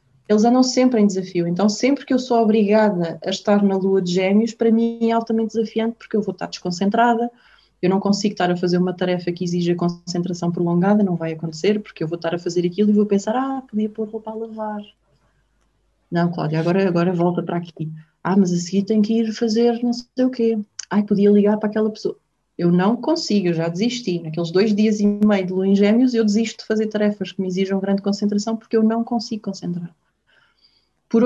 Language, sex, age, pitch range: Portuguese, female, 20-39, 180-220 Hz